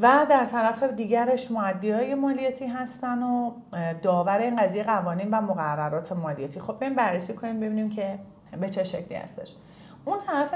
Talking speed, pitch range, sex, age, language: 160 wpm, 180-255 Hz, female, 30-49, Persian